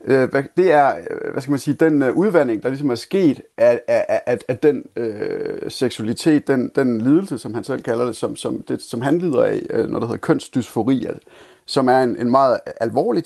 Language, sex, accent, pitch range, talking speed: Danish, male, native, 125-165 Hz, 205 wpm